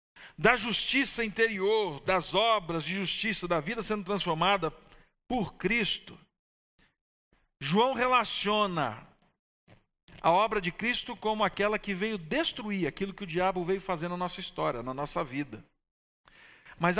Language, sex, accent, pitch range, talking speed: Portuguese, male, Brazilian, 145-210 Hz, 130 wpm